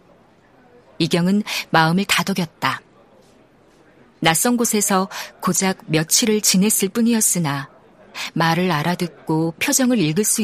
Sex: female